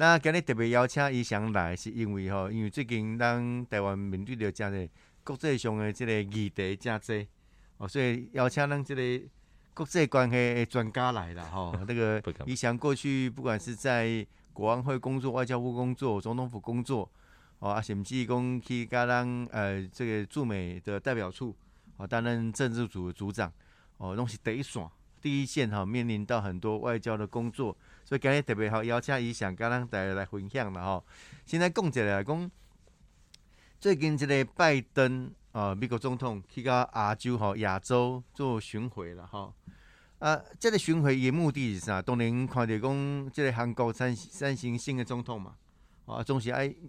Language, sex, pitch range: Chinese, male, 105-130 Hz